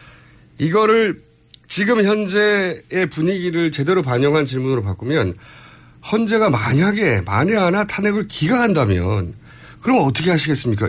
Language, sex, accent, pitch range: Korean, male, native, 100-165 Hz